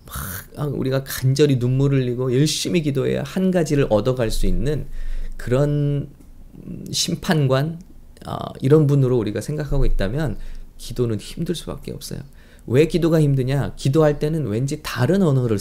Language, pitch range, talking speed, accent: English, 110-155 Hz, 125 wpm, Korean